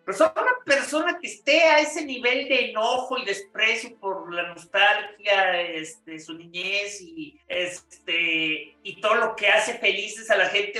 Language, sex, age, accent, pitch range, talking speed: Spanish, male, 50-69, Mexican, 200-275 Hz, 165 wpm